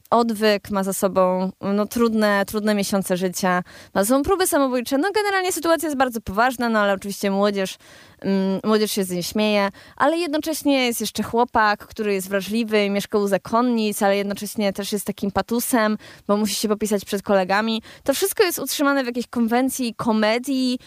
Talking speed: 175 wpm